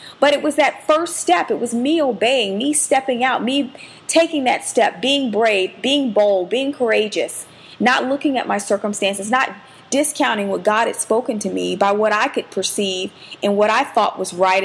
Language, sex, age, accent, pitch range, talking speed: English, female, 40-59, American, 195-255 Hz, 195 wpm